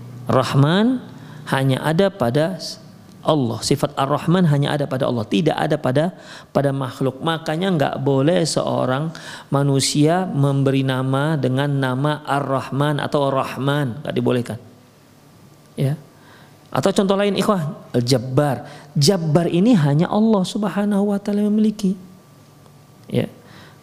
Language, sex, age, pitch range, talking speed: Indonesian, male, 40-59, 130-185 Hz, 115 wpm